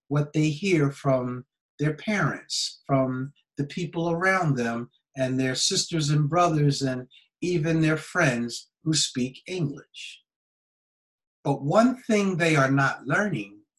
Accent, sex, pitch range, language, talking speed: American, male, 125-175 Hz, English, 130 wpm